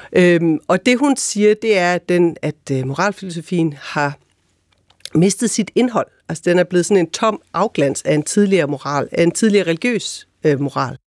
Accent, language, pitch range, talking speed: native, Danish, 165-225 Hz, 140 wpm